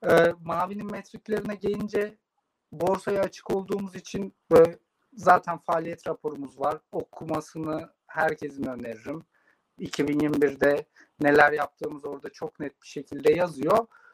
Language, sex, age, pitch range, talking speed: Turkish, male, 50-69, 155-195 Hz, 105 wpm